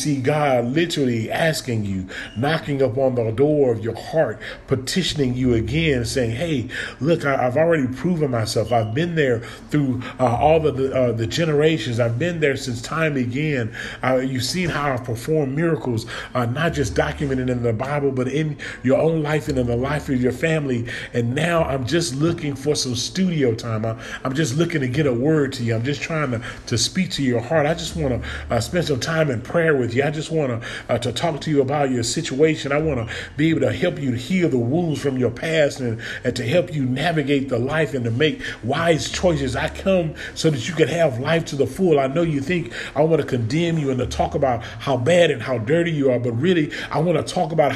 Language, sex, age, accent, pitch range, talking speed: English, male, 40-59, American, 120-155 Hz, 230 wpm